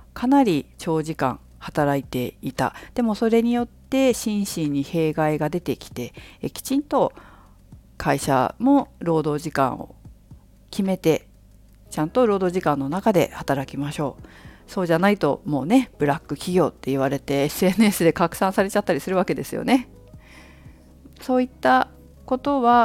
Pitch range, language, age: 140-220 Hz, Japanese, 50-69